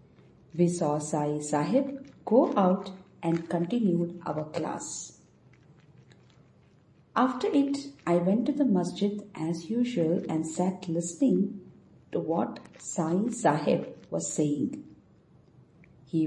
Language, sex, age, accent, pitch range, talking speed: English, female, 50-69, Indian, 160-205 Hz, 105 wpm